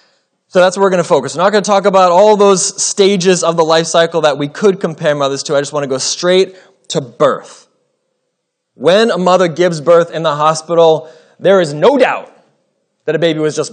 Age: 30-49